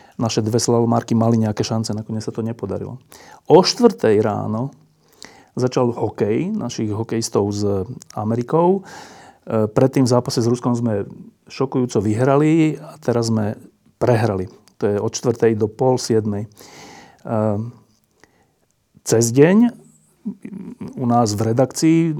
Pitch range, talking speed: 115-155 Hz, 115 wpm